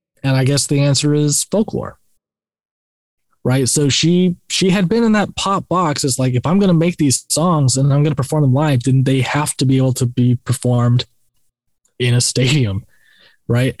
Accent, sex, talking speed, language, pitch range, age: American, male, 190 wpm, English, 130-175 Hz, 20-39